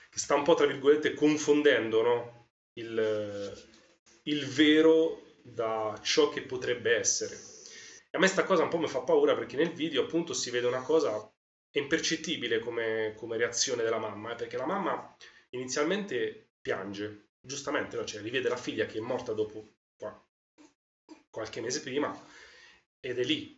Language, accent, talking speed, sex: Italian, native, 155 wpm, male